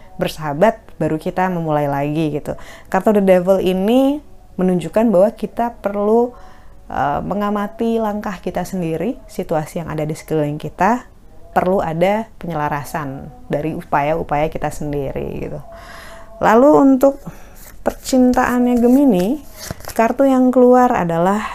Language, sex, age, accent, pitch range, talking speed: Indonesian, female, 20-39, native, 155-210 Hz, 115 wpm